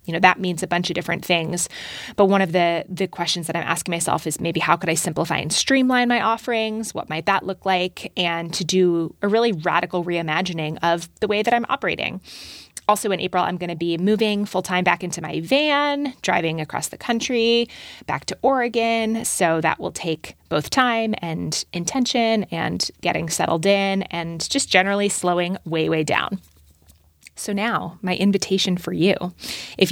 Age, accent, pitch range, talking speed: 20-39, American, 170-215 Hz, 190 wpm